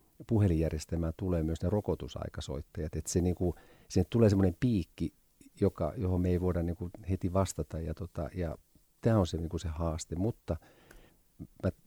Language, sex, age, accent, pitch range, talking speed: Finnish, male, 50-69, native, 80-95 Hz, 155 wpm